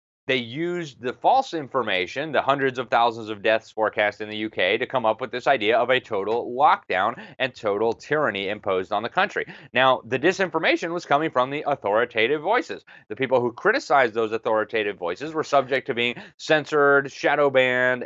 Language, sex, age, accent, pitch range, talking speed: English, male, 30-49, American, 105-145 Hz, 185 wpm